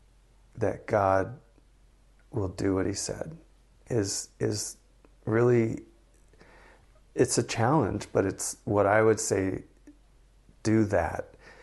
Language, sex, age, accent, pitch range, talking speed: English, male, 40-59, American, 100-120 Hz, 110 wpm